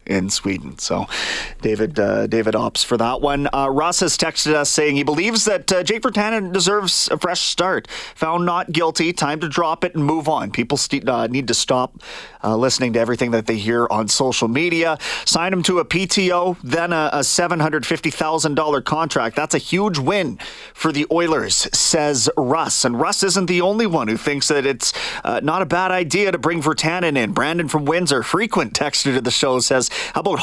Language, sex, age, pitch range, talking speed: English, male, 30-49, 140-185 Hz, 200 wpm